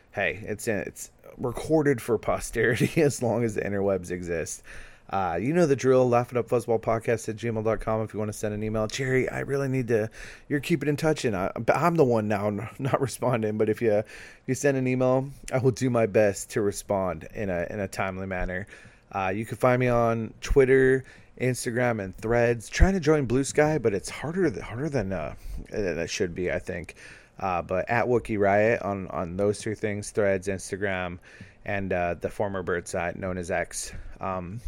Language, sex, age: English, male, 30-49